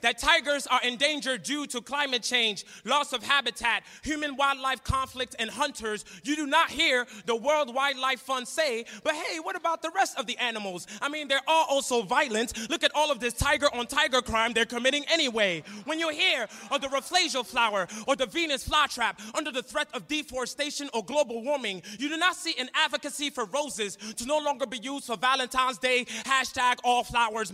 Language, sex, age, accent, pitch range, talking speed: English, male, 20-39, American, 235-290 Hz, 195 wpm